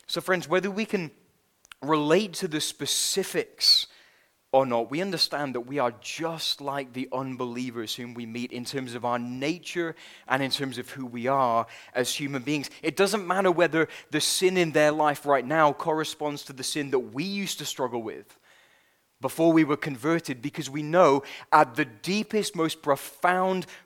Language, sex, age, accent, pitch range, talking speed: English, male, 20-39, British, 130-170 Hz, 180 wpm